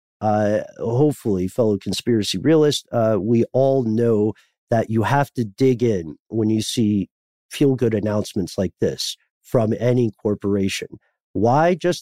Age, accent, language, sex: 50-69, American, English, male